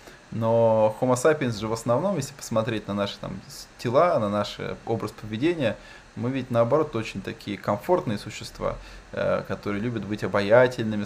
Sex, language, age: male, Russian, 20-39